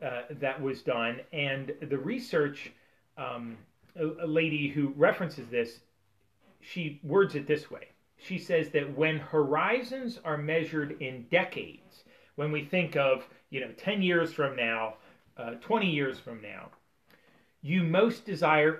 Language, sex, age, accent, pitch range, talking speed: English, male, 40-59, American, 135-190 Hz, 140 wpm